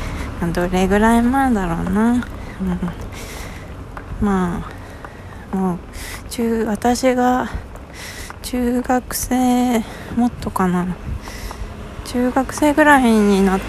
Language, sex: Japanese, female